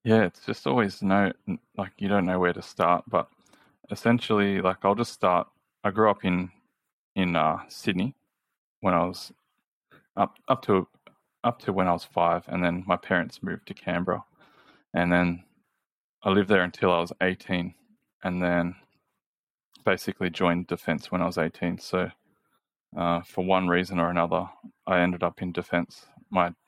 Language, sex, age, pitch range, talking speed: English, male, 20-39, 90-95 Hz, 170 wpm